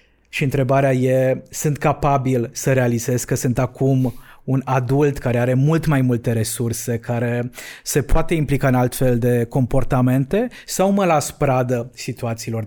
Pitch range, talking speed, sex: 120-150 Hz, 145 wpm, male